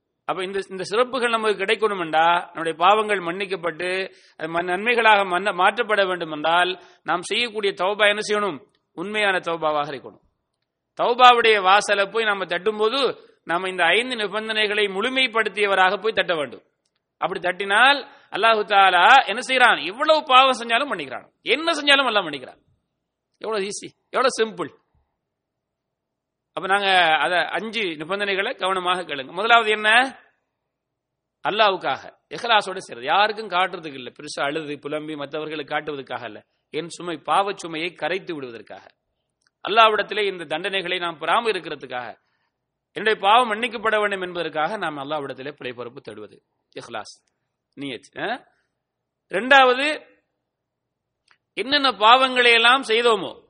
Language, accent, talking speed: English, Indian, 65 wpm